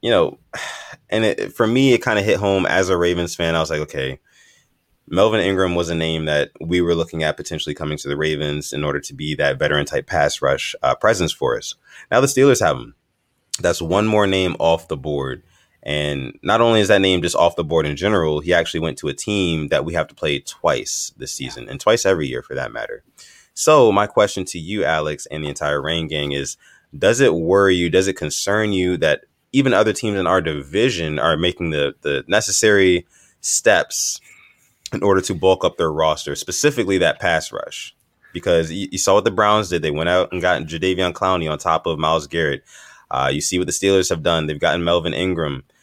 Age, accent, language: 20-39, American, English